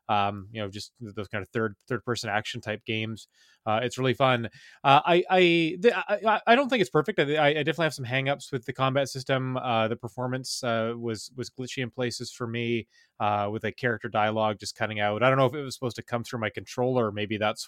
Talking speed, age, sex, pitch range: 240 wpm, 30-49, male, 110-135 Hz